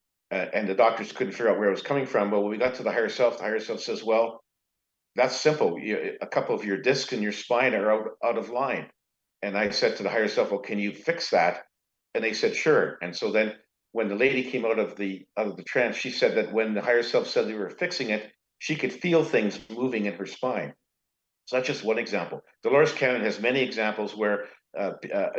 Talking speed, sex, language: 245 wpm, male, English